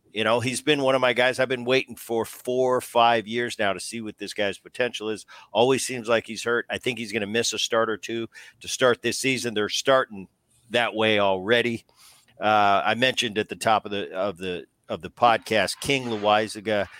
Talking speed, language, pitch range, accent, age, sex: 220 wpm, English, 110-130 Hz, American, 50-69, male